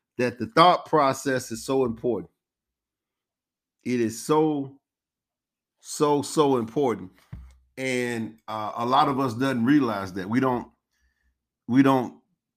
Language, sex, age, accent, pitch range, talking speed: English, male, 50-69, American, 110-140 Hz, 125 wpm